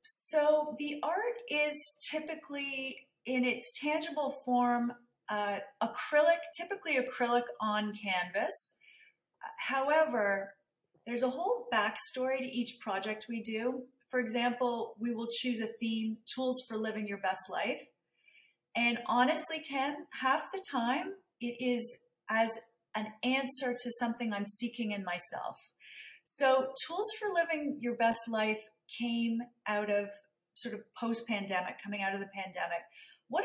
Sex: female